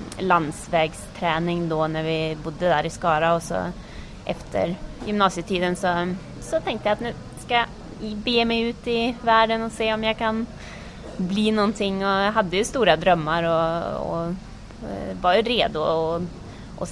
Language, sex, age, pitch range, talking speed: English, female, 20-39, 165-200 Hz, 160 wpm